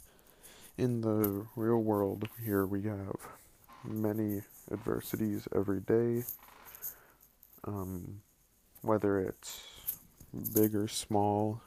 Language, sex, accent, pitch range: English, male, American, 100-115 Hz